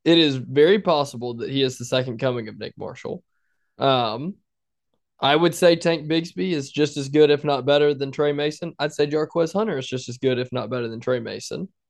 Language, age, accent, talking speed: English, 20-39, American, 215 wpm